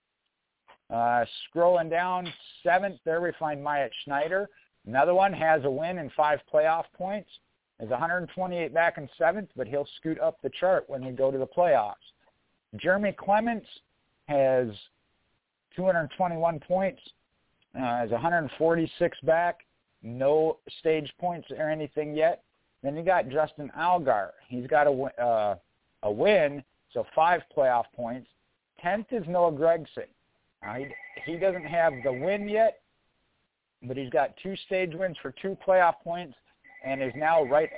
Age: 50-69